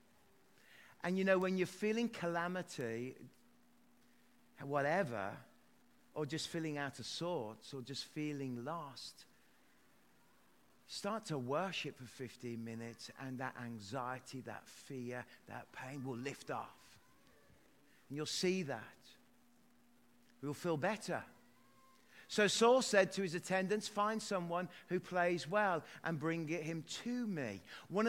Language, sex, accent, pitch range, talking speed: English, male, British, 135-205 Hz, 125 wpm